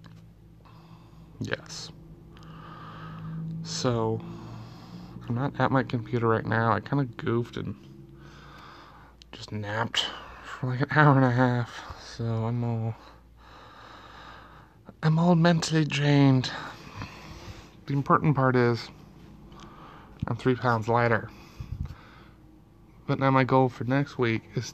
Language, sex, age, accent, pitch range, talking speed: English, male, 20-39, American, 110-145 Hz, 110 wpm